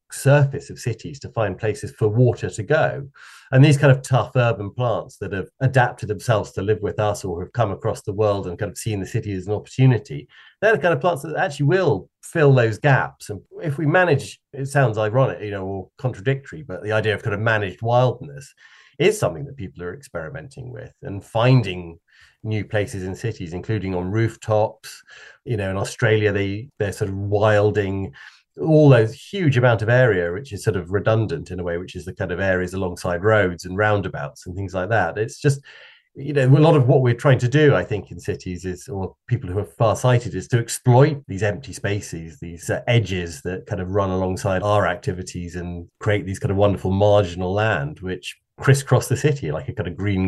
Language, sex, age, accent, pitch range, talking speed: English, male, 30-49, British, 95-130 Hz, 215 wpm